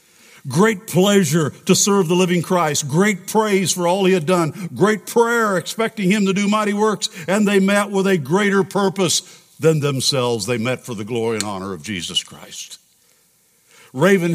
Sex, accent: male, American